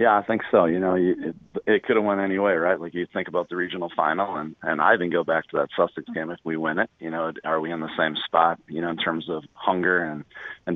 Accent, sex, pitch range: American, male, 80-90 Hz